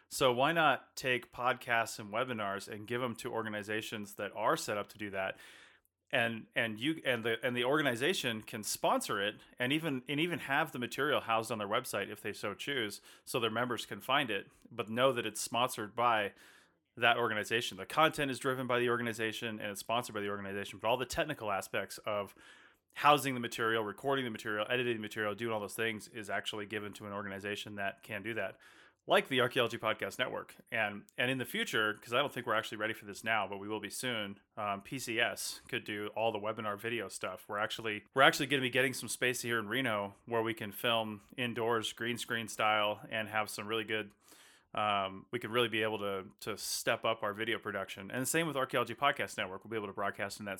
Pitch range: 105-120 Hz